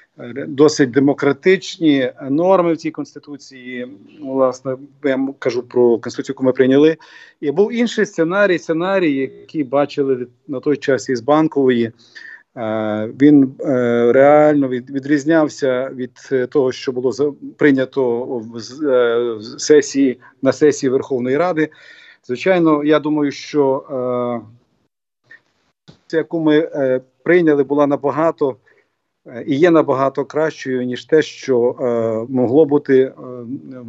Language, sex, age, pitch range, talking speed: English, male, 50-69, 125-150 Hz, 110 wpm